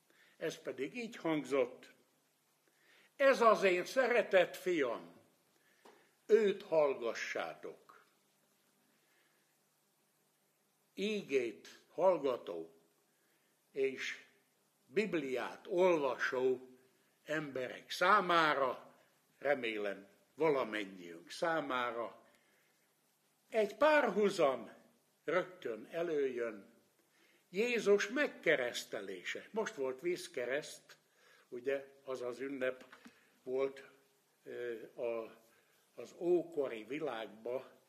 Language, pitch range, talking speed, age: Hungarian, 130-210 Hz, 60 wpm, 60-79